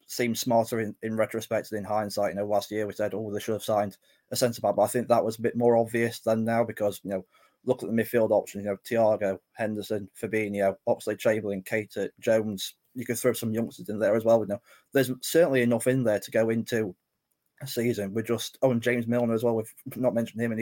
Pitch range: 105-120 Hz